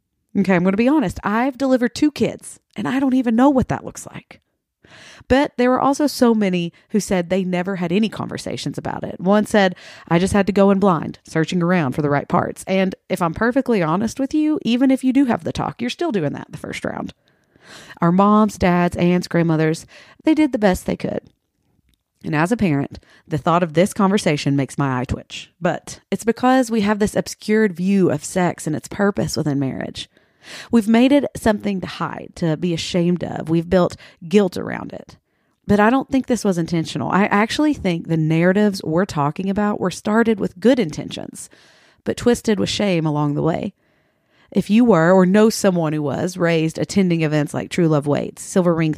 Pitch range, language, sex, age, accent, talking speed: 160-220 Hz, English, female, 30-49, American, 205 wpm